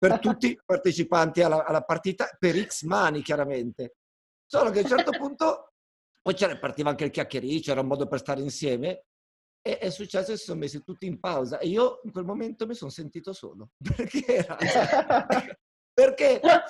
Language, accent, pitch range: Italian, native, 140-210 Hz